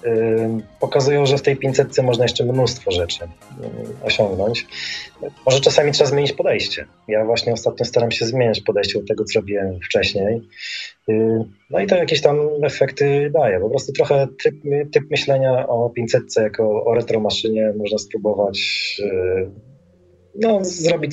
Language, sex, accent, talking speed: Polish, male, native, 135 wpm